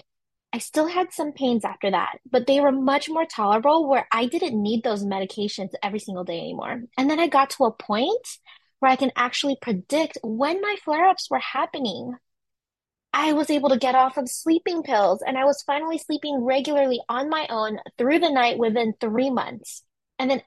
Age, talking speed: 20-39, 195 wpm